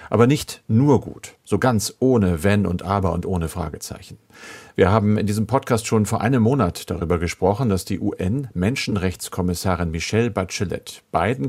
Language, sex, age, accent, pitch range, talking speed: German, male, 50-69, German, 95-120 Hz, 155 wpm